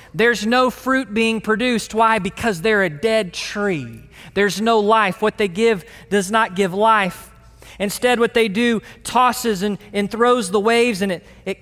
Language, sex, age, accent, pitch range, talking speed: English, male, 20-39, American, 160-220 Hz, 175 wpm